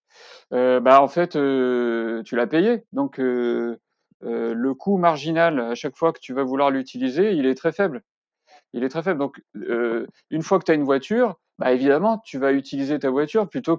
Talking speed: 205 wpm